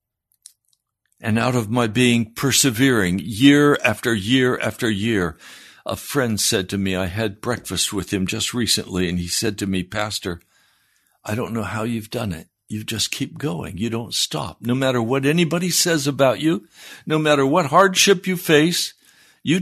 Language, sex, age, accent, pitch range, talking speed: English, male, 60-79, American, 105-145 Hz, 175 wpm